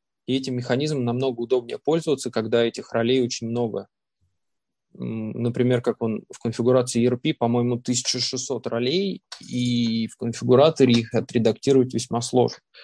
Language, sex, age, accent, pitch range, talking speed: Russian, male, 20-39, native, 120-135 Hz, 125 wpm